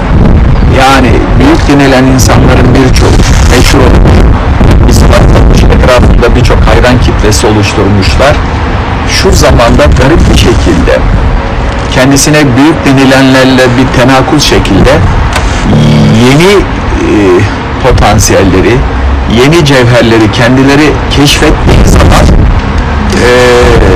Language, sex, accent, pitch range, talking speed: Turkish, male, native, 95-145 Hz, 85 wpm